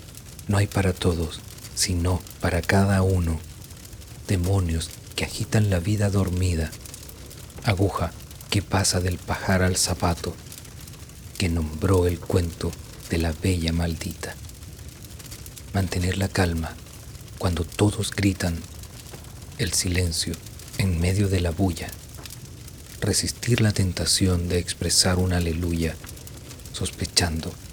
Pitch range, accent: 85-100 Hz, Mexican